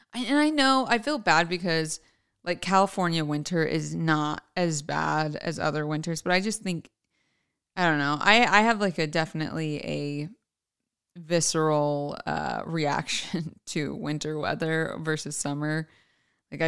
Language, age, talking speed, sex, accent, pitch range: English, 20-39, 145 wpm, female, American, 150-175 Hz